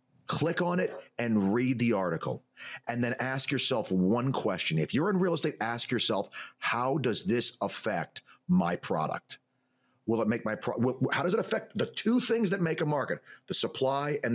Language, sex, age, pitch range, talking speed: English, male, 40-59, 130-170 Hz, 185 wpm